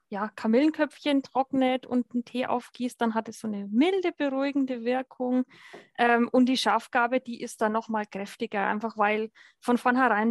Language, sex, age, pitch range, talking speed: German, female, 20-39, 215-255 Hz, 170 wpm